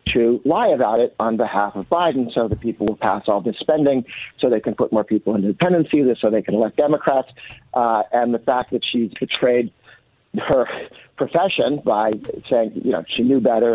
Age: 50-69